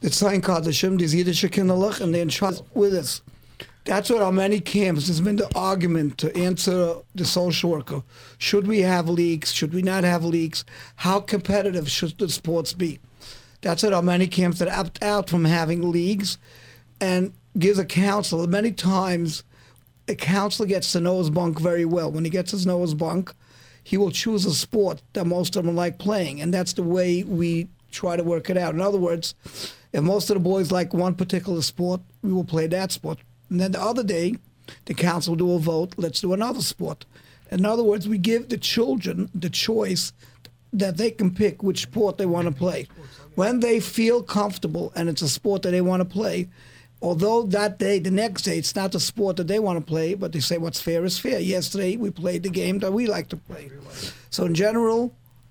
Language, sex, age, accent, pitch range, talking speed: English, male, 50-69, American, 170-200 Hz, 200 wpm